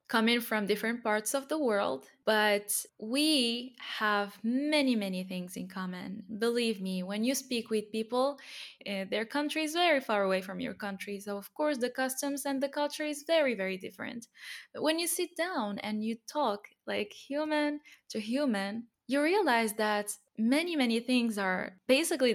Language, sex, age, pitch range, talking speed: English, female, 10-29, 205-275 Hz, 170 wpm